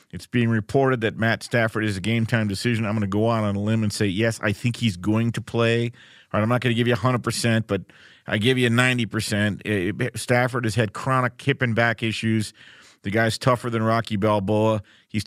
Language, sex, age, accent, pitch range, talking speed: English, male, 50-69, American, 110-145 Hz, 210 wpm